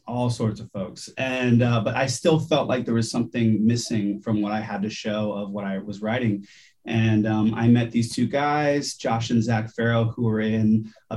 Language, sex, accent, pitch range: English, male, American, 110-125 Hz